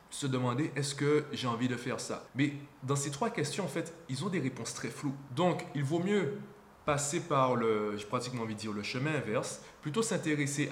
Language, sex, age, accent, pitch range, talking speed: French, male, 20-39, French, 120-155 Hz, 230 wpm